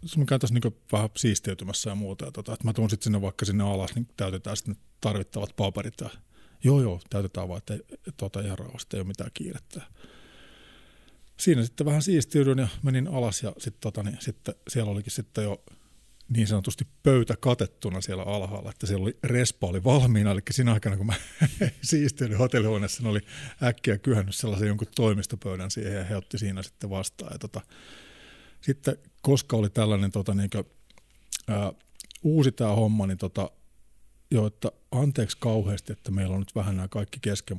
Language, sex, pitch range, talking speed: Finnish, male, 100-125 Hz, 175 wpm